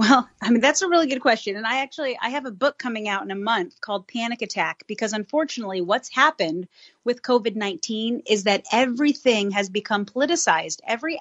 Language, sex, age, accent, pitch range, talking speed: English, female, 30-49, American, 200-260 Hz, 195 wpm